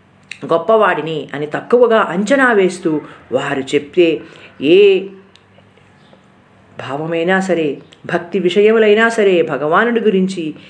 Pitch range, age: 160-245 Hz, 50-69